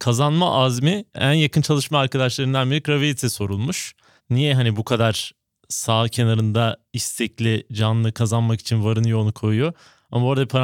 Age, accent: 30-49, native